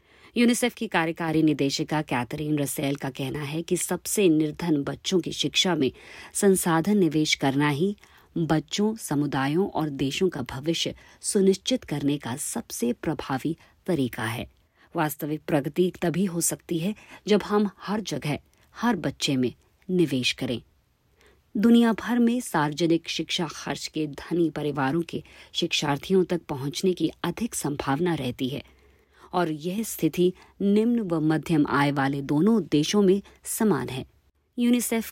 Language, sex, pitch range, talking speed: Hindi, female, 145-185 Hz, 135 wpm